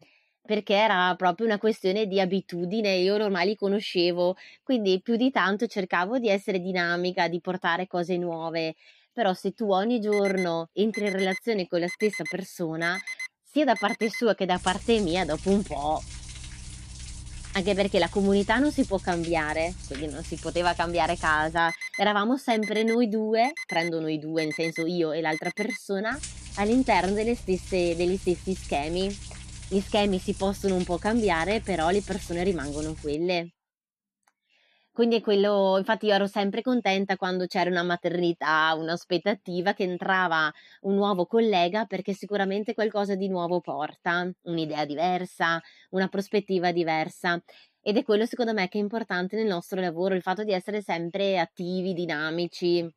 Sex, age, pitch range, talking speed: female, 20-39, 175-210 Hz, 155 wpm